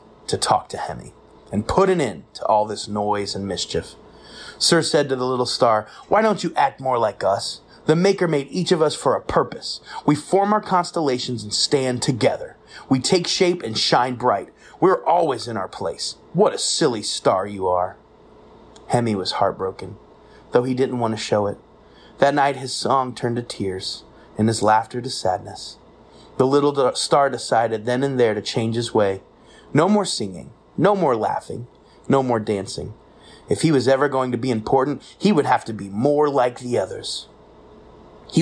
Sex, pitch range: male, 115-160 Hz